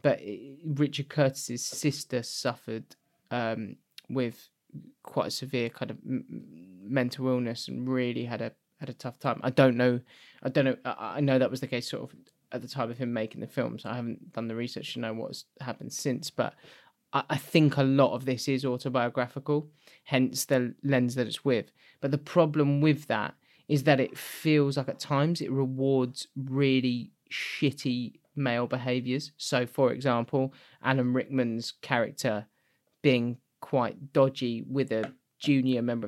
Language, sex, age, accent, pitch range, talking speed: English, male, 20-39, British, 120-140 Hz, 170 wpm